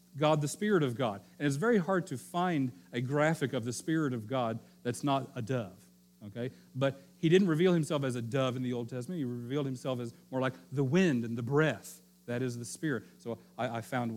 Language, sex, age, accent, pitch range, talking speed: English, male, 40-59, American, 120-165 Hz, 230 wpm